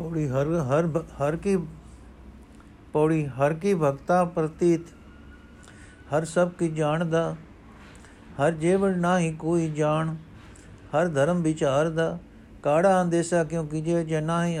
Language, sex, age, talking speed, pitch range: Punjabi, male, 60-79, 120 wpm, 135-165 Hz